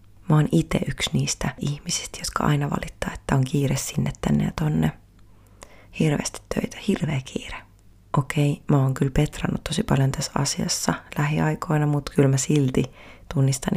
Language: Finnish